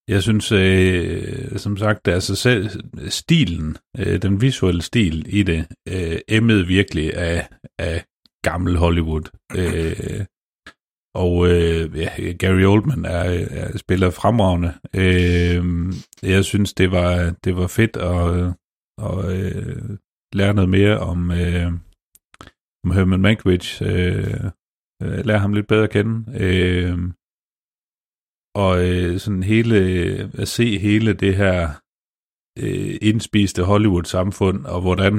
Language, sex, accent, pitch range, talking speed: Danish, male, native, 85-100 Hz, 120 wpm